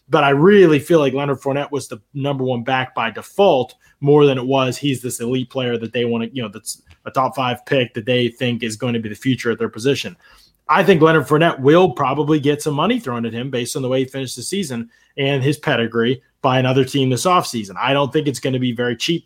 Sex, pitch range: male, 125-145 Hz